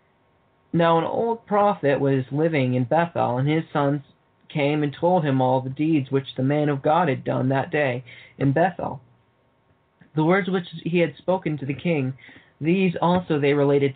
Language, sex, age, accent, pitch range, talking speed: English, male, 20-39, American, 140-170 Hz, 180 wpm